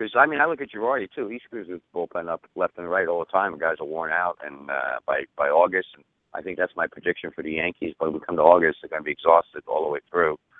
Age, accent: 60-79, American